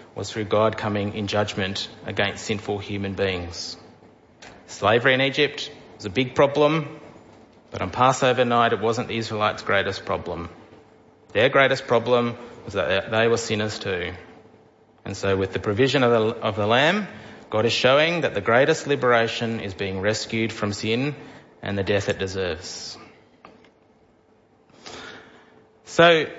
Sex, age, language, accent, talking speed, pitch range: male, 30-49, English, Australian, 145 wpm, 105-130 Hz